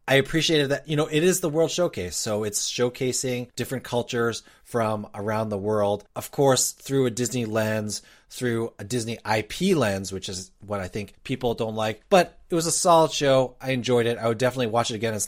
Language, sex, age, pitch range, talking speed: English, male, 30-49, 100-135 Hz, 210 wpm